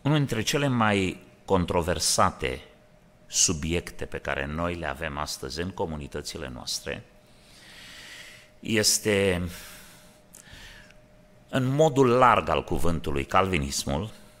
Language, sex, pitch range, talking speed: Romanian, male, 85-135 Hz, 90 wpm